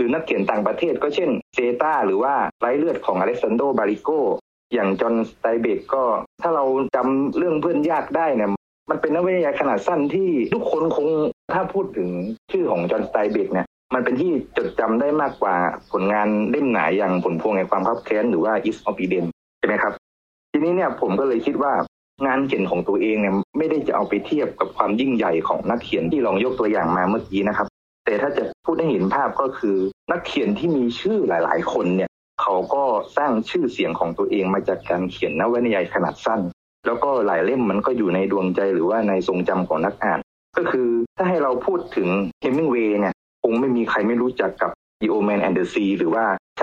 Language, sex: Thai, male